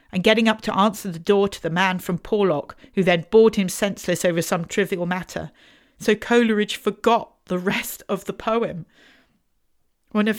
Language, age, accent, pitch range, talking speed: English, 40-59, British, 180-230 Hz, 180 wpm